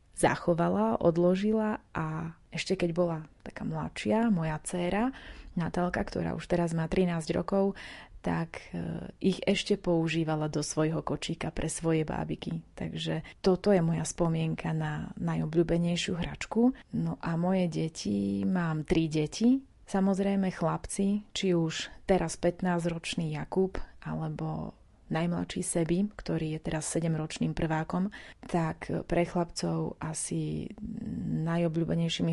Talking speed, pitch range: 115 wpm, 160-185 Hz